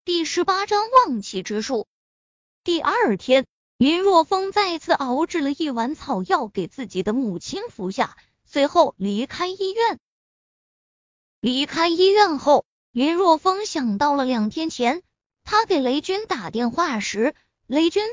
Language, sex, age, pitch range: Chinese, female, 20-39, 230-355 Hz